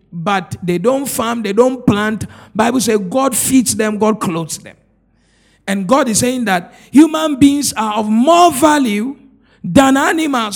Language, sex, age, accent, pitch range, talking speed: English, male, 50-69, Nigerian, 185-255 Hz, 160 wpm